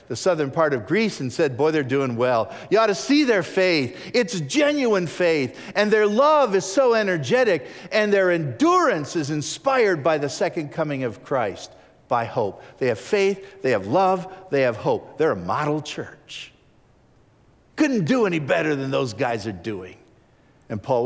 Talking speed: 180 wpm